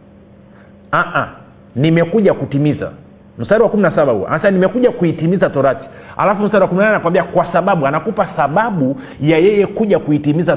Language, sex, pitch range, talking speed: Swahili, male, 140-195 Hz, 135 wpm